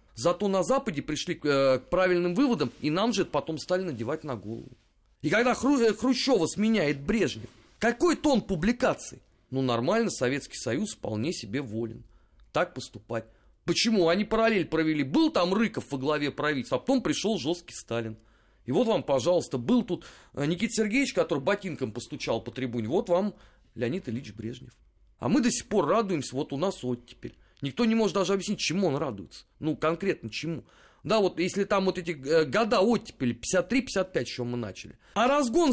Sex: male